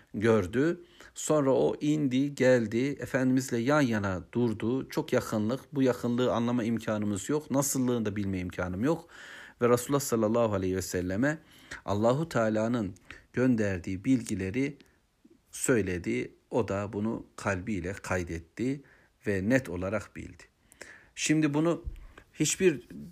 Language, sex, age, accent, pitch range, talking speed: Turkish, male, 60-79, native, 100-135 Hz, 115 wpm